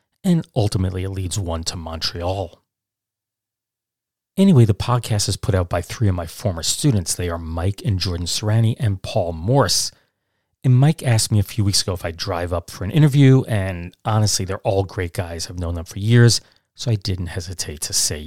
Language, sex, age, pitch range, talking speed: English, male, 40-59, 95-115 Hz, 195 wpm